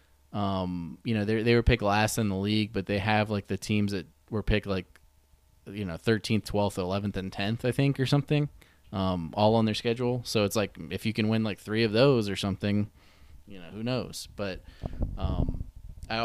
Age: 20-39